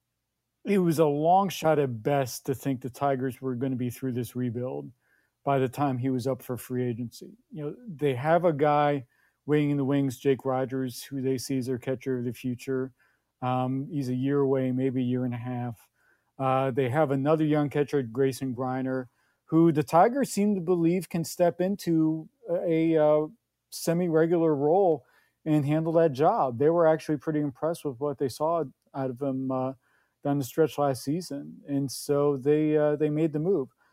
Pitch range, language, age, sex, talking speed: 130-155 Hz, English, 40-59, male, 195 wpm